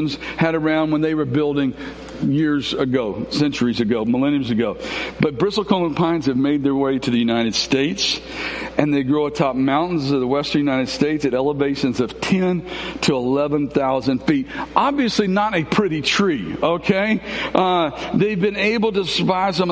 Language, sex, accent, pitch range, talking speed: English, male, American, 165-210 Hz, 160 wpm